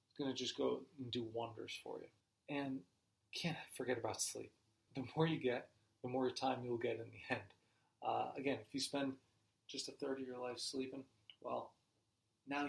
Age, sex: 30-49, male